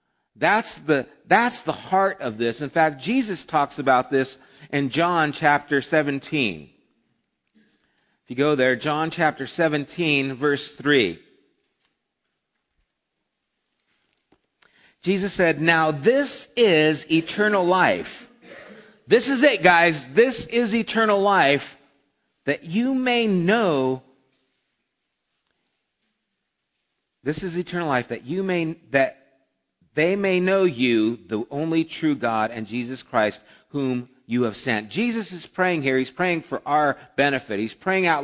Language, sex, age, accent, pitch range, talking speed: English, male, 50-69, American, 135-175 Hz, 125 wpm